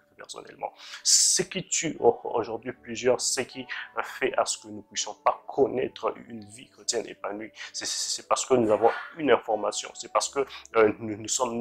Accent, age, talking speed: French, 30-49, 190 wpm